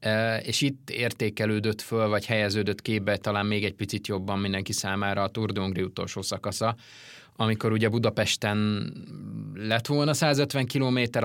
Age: 20-39